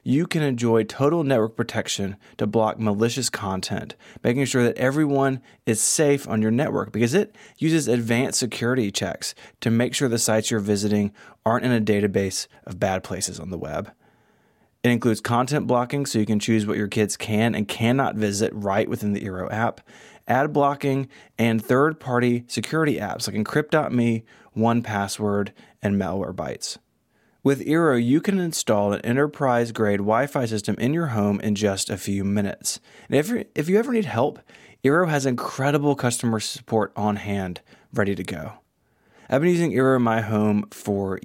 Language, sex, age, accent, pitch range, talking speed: English, male, 20-39, American, 105-135 Hz, 165 wpm